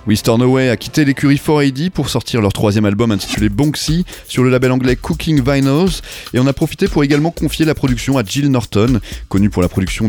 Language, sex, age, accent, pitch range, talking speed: French, male, 30-49, French, 105-140 Hz, 210 wpm